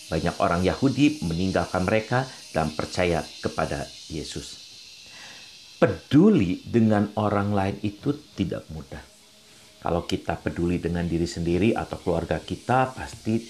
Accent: native